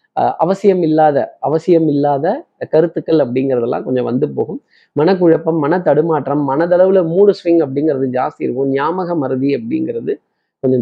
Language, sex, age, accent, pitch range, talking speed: Tamil, male, 20-39, native, 140-185 Hz, 120 wpm